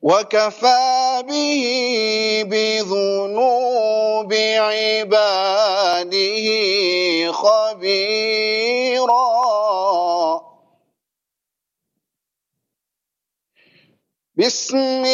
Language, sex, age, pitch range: English, male, 50-69, 165-220 Hz